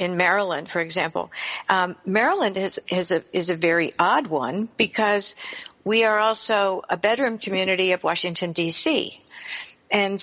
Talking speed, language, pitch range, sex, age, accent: 145 wpm, English, 165-205 Hz, female, 60-79, American